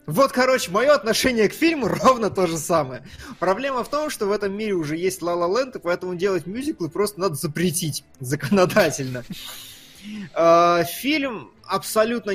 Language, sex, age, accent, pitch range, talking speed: Russian, male, 20-39, native, 150-205 Hz, 150 wpm